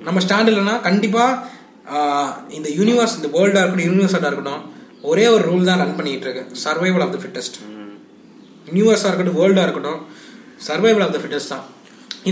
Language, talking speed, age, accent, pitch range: Tamil, 110 wpm, 20-39, native, 175-225 Hz